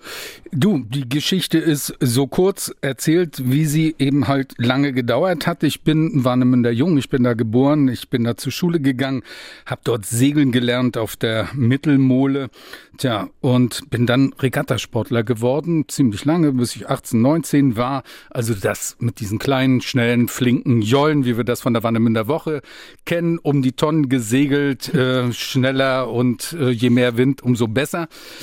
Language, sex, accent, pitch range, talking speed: German, male, German, 120-145 Hz, 165 wpm